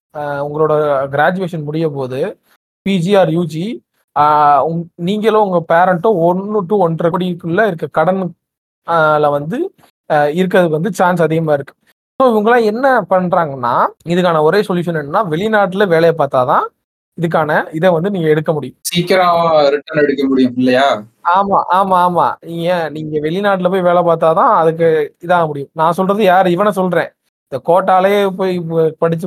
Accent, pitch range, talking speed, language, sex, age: native, 155-195 Hz, 125 wpm, Tamil, male, 30-49